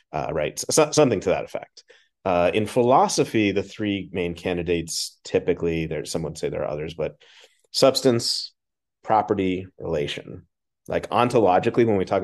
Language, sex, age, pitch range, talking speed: English, male, 30-49, 85-100 Hz, 150 wpm